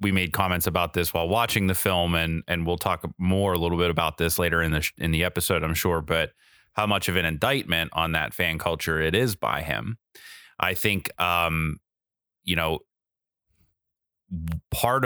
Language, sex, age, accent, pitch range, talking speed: English, male, 30-49, American, 85-105 Hz, 190 wpm